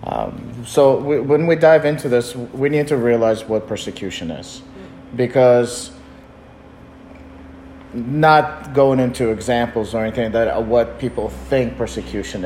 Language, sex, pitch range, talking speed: English, male, 120-150 Hz, 135 wpm